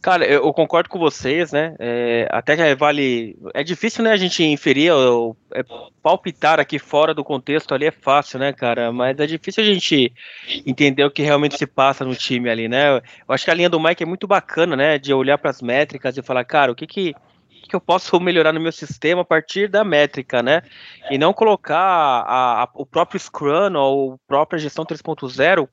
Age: 20-39